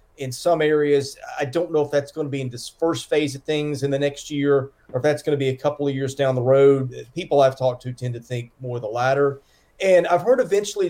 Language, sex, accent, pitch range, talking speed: English, male, American, 130-155 Hz, 270 wpm